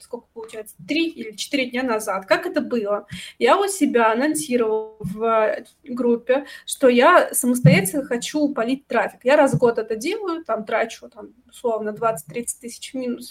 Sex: female